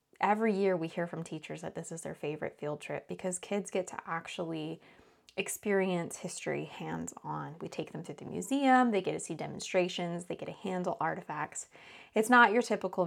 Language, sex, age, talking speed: English, female, 20-39, 190 wpm